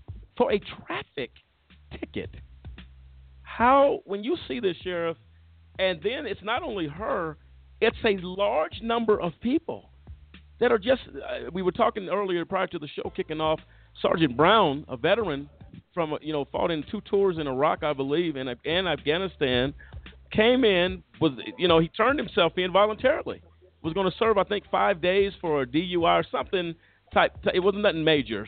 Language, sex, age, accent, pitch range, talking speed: English, male, 50-69, American, 125-200 Hz, 175 wpm